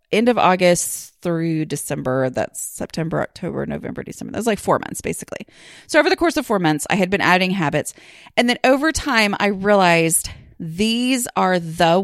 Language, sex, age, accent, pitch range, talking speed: English, female, 30-49, American, 170-245 Hz, 180 wpm